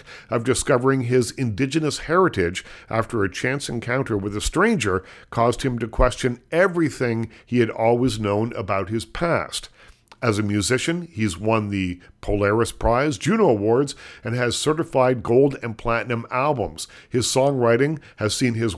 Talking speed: 145 wpm